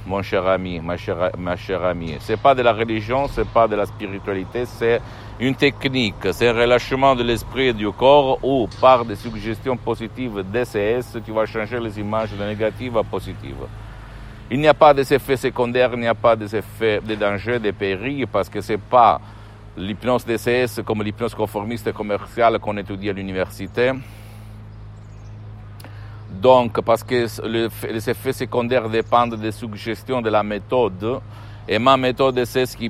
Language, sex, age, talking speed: Italian, male, 50-69, 170 wpm